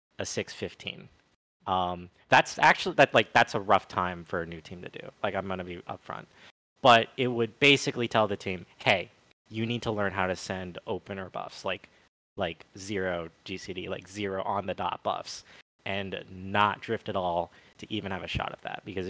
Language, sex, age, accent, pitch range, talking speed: English, male, 20-39, American, 90-105 Hz, 200 wpm